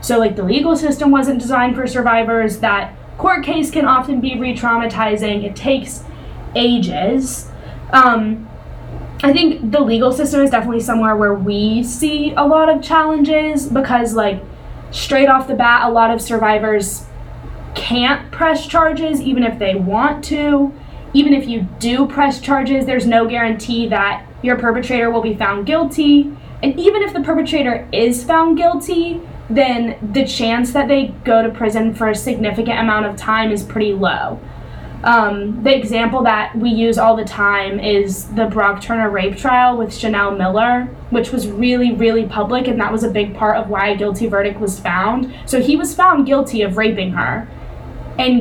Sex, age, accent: female, 10-29, American